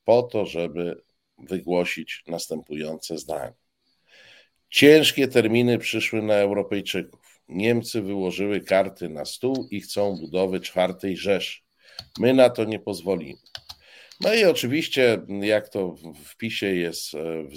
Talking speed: 120 wpm